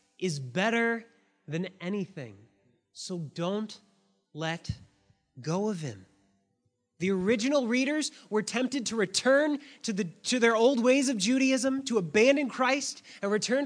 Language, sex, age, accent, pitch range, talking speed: English, male, 20-39, American, 195-250 Hz, 130 wpm